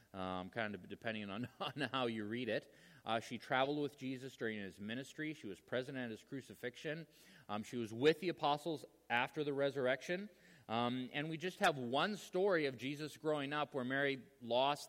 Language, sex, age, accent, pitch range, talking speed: English, male, 30-49, American, 100-140 Hz, 190 wpm